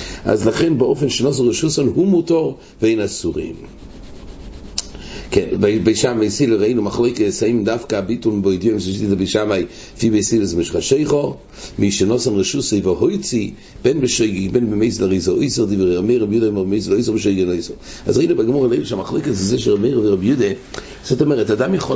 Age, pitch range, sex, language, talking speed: 60-79, 100-130 Hz, male, English, 55 wpm